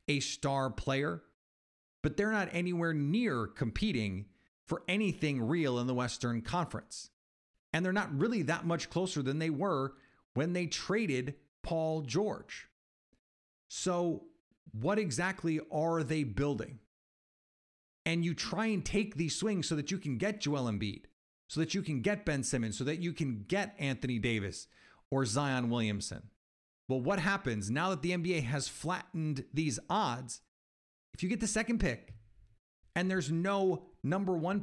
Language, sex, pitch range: English, male, 125-180 Hz